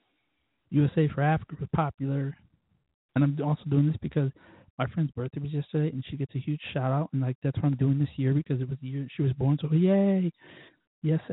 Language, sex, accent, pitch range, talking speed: English, male, American, 130-150 Hz, 220 wpm